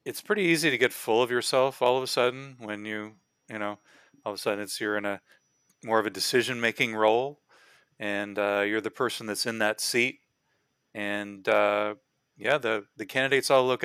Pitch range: 105-125 Hz